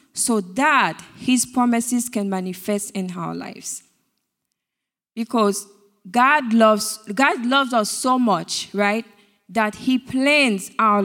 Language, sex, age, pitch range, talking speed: English, female, 20-39, 200-255 Hz, 120 wpm